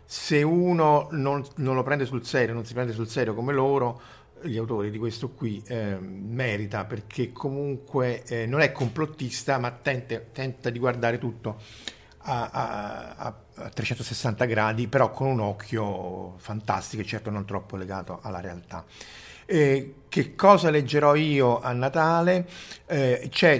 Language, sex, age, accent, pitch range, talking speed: Italian, male, 50-69, native, 110-140 Hz, 150 wpm